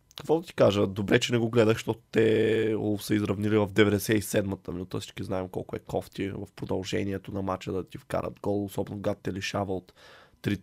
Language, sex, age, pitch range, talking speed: Bulgarian, male, 20-39, 100-120 Hz, 200 wpm